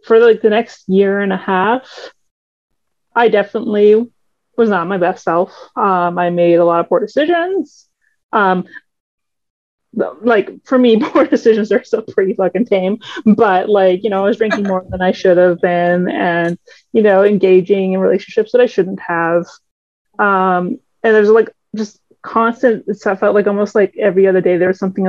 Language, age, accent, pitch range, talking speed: English, 30-49, American, 190-235 Hz, 175 wpm